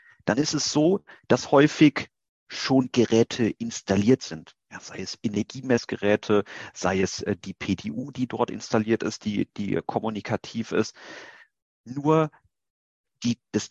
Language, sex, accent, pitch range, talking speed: German, male, German, 100-140 Hz, 120 wpm